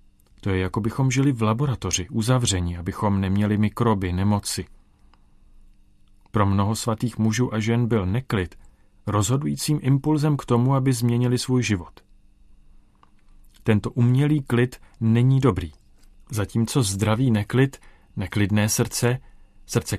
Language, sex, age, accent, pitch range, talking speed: Czech, male, 40-59, native, 100-120 Hz, 115 wpm